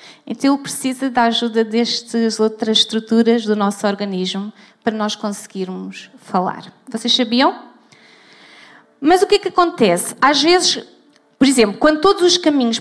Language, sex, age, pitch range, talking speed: Portuguese, female, 20-39, 210-265 Hz, 145 wpm